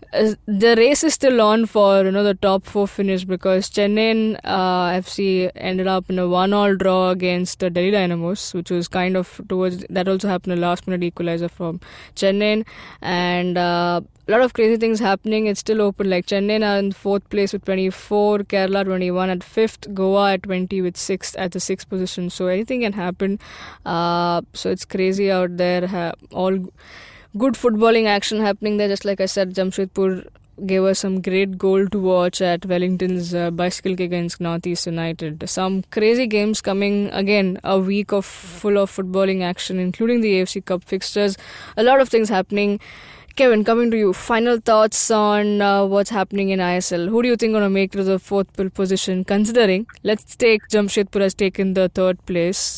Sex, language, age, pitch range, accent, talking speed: female, English, 20-39, 185-205 Hz, Indian, 185 wpm